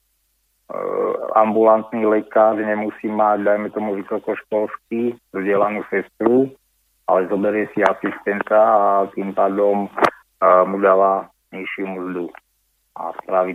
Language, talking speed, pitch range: Slovak, 95 wpm, 100-110 Hz